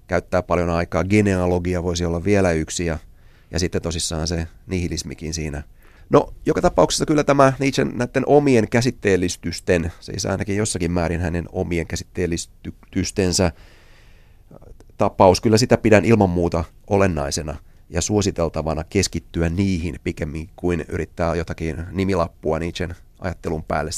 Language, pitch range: Finnish, 85-95 Hz